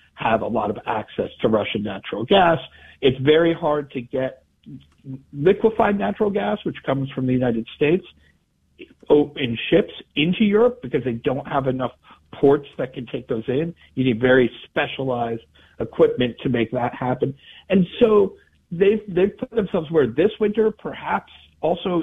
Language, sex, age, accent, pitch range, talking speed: English, male, 50-69, American, 115-165 Hz, 160 wpm